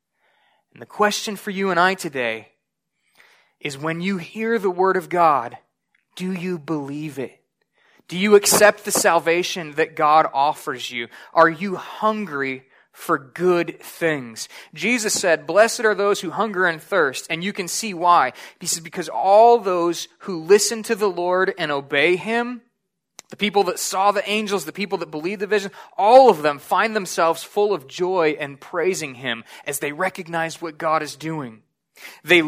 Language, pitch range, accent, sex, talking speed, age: English, 155-200 Hz, American, male, 170 wpm, 20-39